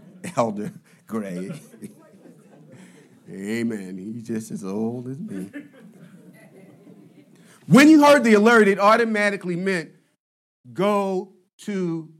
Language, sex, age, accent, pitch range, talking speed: English, male, 40-59, American, 120-185 Hz, 95 wpm